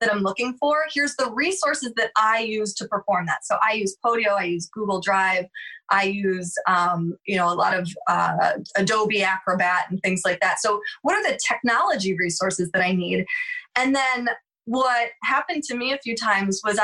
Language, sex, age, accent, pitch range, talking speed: English, female, 20-39, American, 200-280 Hz, 195 wpm